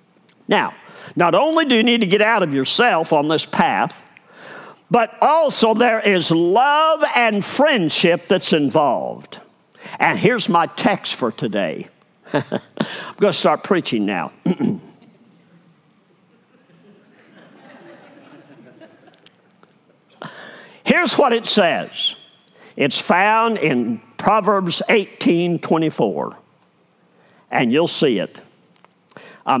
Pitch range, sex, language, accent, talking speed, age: 155-230 Hz, male, English, American, 100 wpm, 50-69